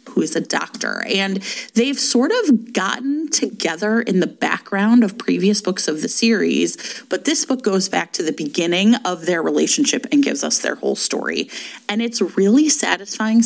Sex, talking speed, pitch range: female, 180 wpm, 185-245 Hz